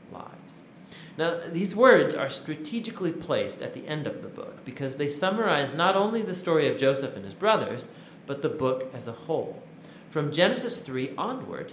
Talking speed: 175 wpm